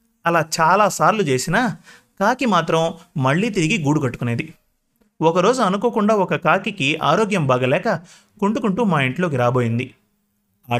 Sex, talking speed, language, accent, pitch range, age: male, 110 wpm, Telugu, native, 130-190 Hz, 30-49